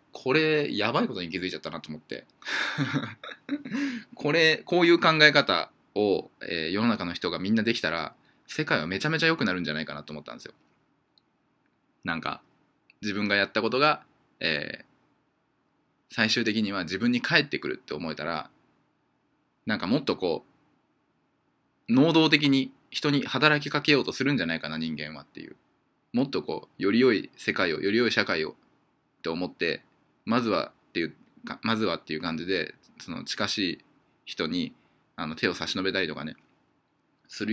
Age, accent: 20-39, native